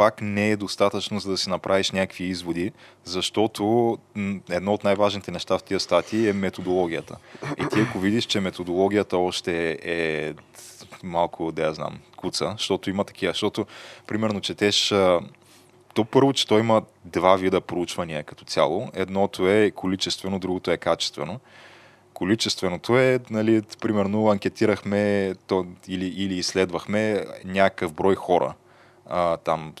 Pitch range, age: 90-105 Hz, 20-39